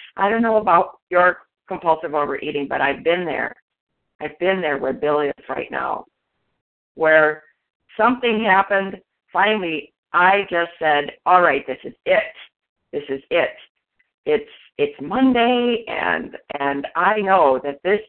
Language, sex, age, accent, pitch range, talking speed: English, female, 50-69, American, 165-230 Hz, 140 wpm